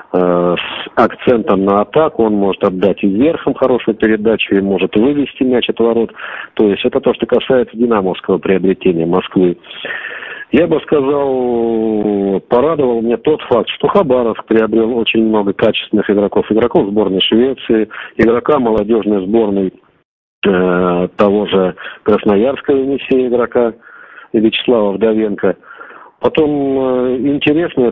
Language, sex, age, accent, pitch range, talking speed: Russian, male, 40-59, native, 105-130 Hz, 120 wpm